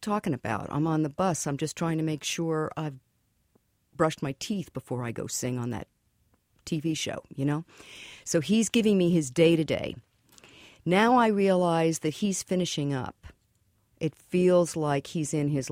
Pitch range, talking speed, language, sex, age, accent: 135-180 Hz, 170 wpm, English, female, 50-69, American